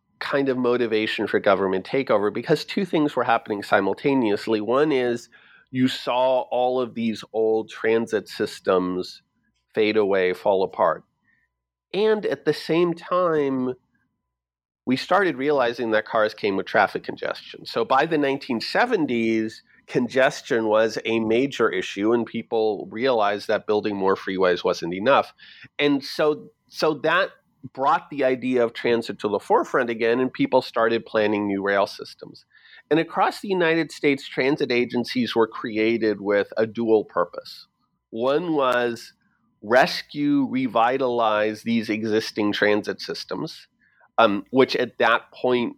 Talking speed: 135 wpm